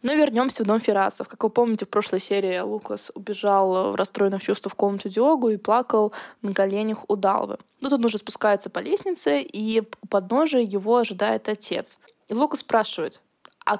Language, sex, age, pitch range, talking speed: Russian, female, 20-39, 200-255 Hz, 185 wpm